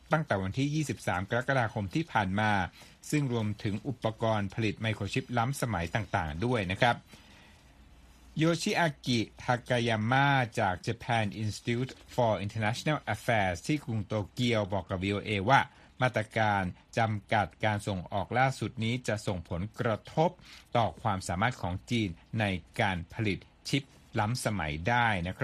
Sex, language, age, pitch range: male, Thai, 60-79, 100-125 Hz